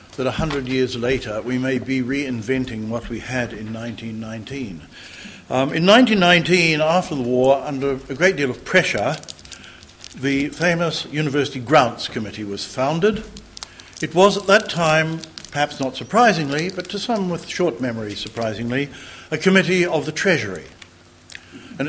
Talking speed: 150 wpm